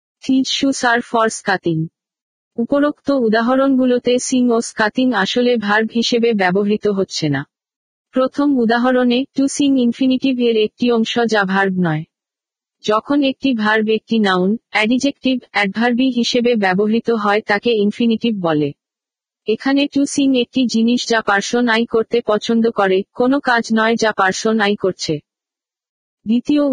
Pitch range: 205-250 Hz